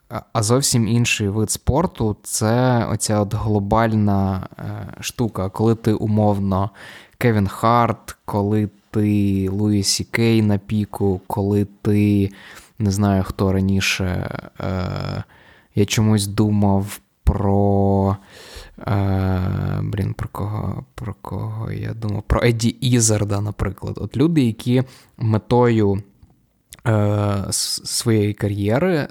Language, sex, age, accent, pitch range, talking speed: Ukrainian, male, 20-39, native, 100-115 Hz, 105 wpm